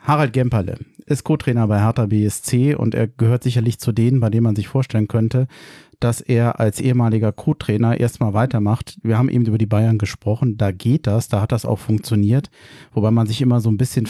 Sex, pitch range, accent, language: male, 105-125 Hz, German, German